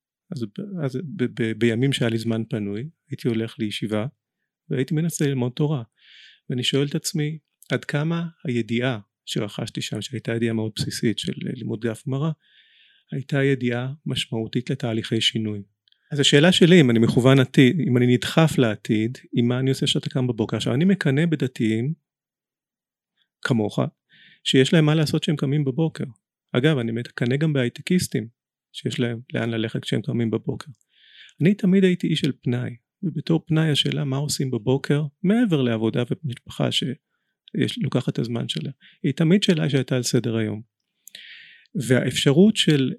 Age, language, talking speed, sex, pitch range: 30-49, Hebrew, 150 wpm, male, 120-155 Hz